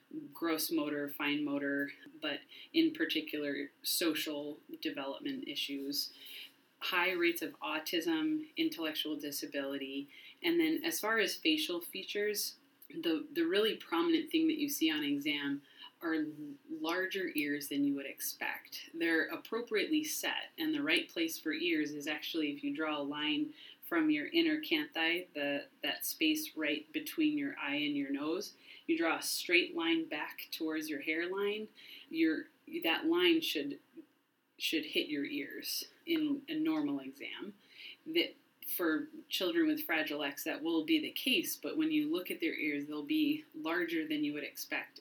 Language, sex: English, female